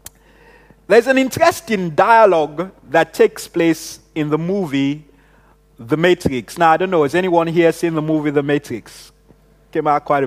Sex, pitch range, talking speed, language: male, 165-230 Hz, 160 wpm, English